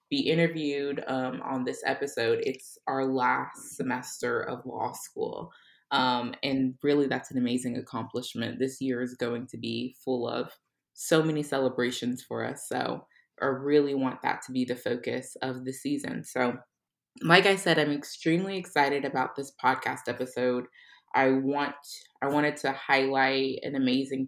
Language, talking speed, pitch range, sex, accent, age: English, 155 wpm, 125-145 Hz, female, American, 20-39